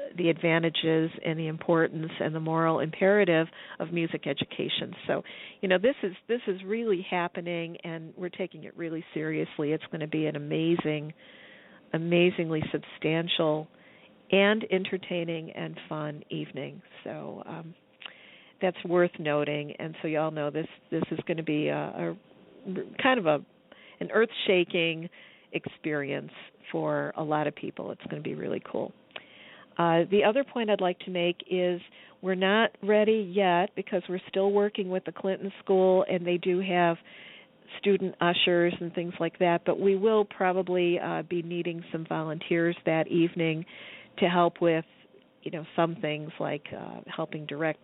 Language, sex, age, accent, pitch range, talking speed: English, female, 50-69, American, 160-190 Hz, 160 wpm